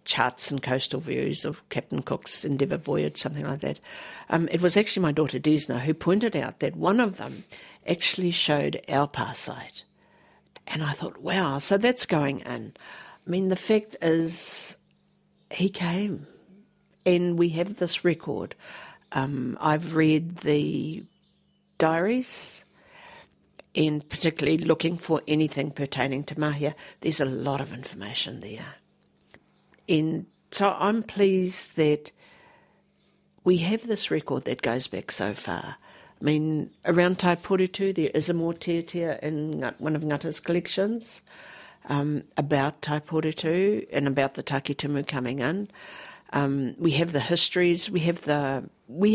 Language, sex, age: English, female, 60-79